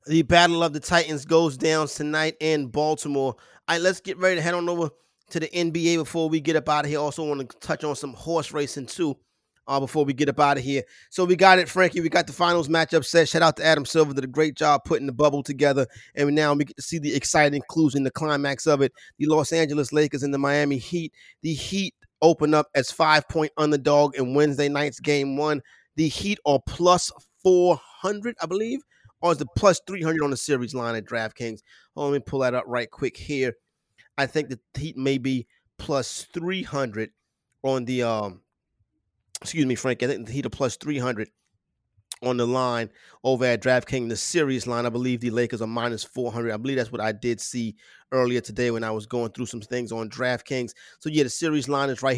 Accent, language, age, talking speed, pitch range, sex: American, English, 30-49, 225 wpm, 125-155 Hz, male